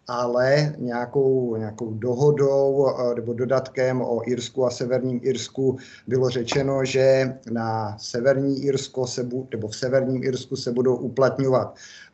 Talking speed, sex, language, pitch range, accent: 125 wpm, male, Czech, 125-140 Hz, native